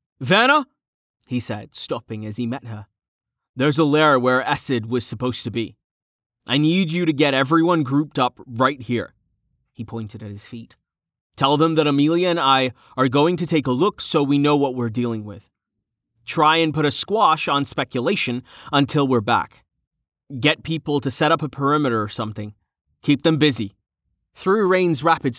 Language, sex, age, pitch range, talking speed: English, male, 20-39, 110-160 Hz, 180 wpm